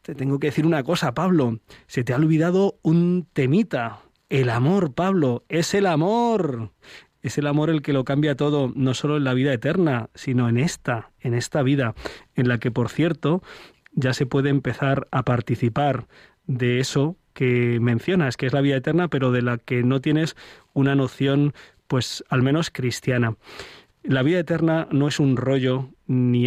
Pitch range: 125-160 Hz